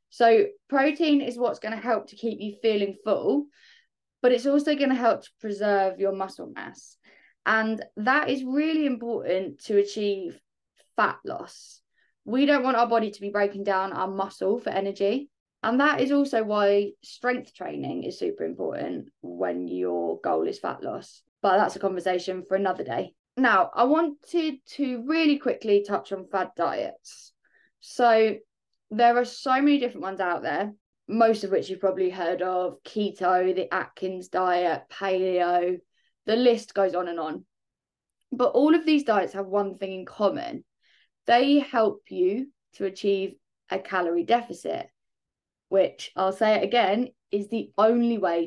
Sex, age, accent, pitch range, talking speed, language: female, 20-39, British, 195-255 Hz, 165 wpm, English